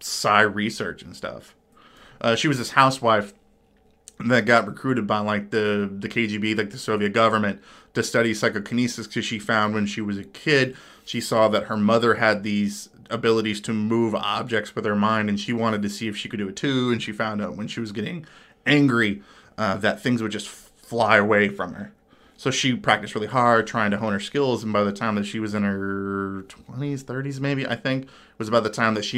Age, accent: 20-39, American